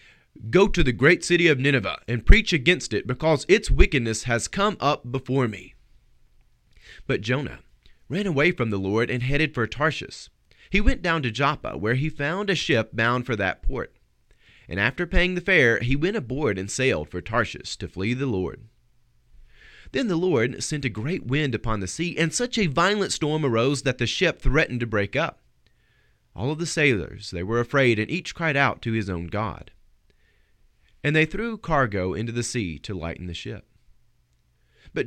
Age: 30-49